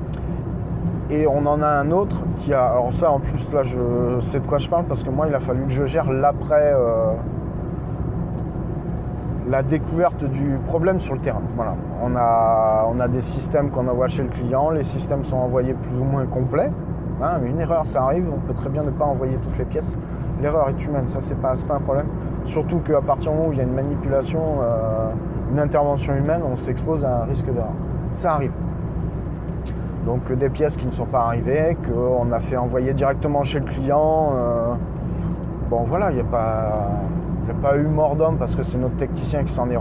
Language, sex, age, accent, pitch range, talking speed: French, male, 20-39, French, 120-150 Hz, 210 wpm